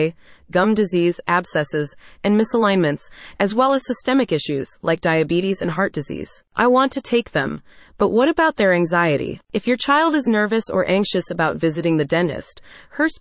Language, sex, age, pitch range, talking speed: English, female, 30-49, 170-225 Hz, 170 wpm